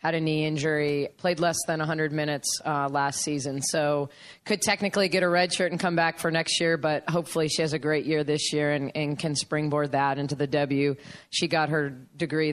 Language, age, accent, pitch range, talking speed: English, 20-39, American, 145-160 Hz, 220 wpm